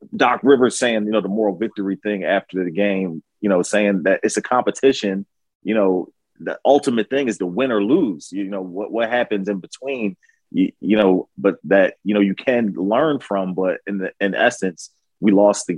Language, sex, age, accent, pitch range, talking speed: English, male, 30-49, American, 100-130 Hz, 210 wpm